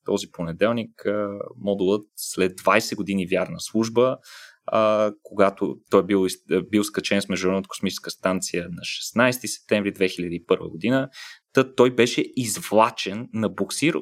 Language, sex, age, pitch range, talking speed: Bulgarian, male, 20-39, 100-120 Hz, 115 wpm